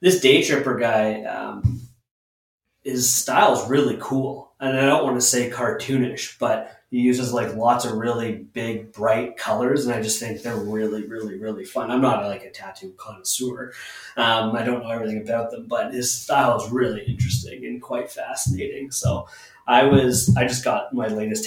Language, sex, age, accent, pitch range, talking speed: English, male, 30-49, American, 105-125 Hz, 185 wpm